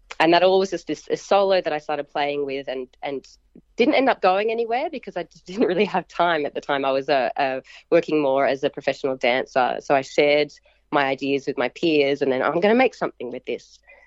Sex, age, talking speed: female, 30-49, 245 wpm